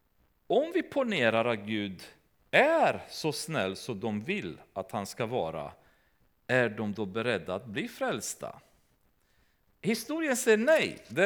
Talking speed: 140 wpm